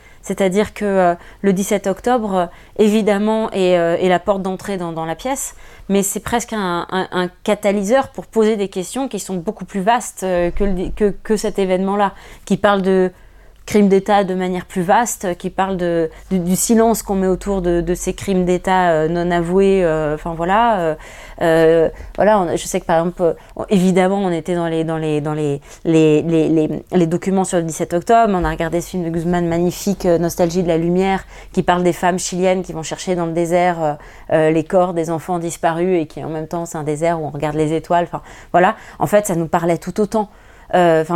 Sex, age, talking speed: female, 20-39, 195 wpm